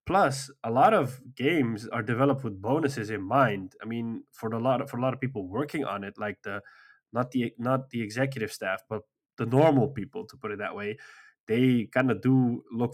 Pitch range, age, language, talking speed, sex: 110-130 Hz, 20-39, English, 220 wpm, male